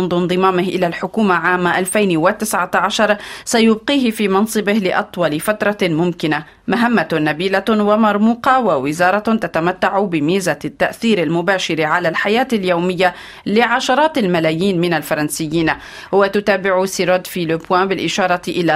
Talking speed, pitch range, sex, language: 100 wpm, 170-200 Hz, female, Arabic